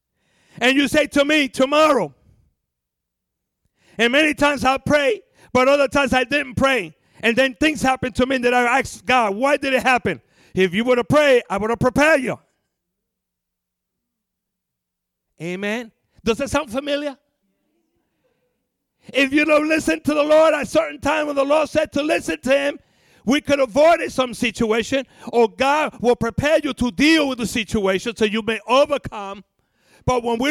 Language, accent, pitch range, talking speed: English, American, 220-280 Hz, 170 wpm